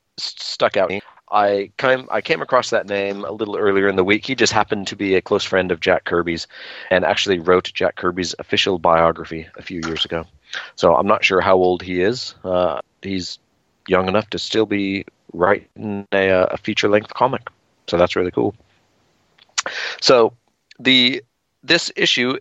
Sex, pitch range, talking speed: male, 90-105 Hz, 175 wpm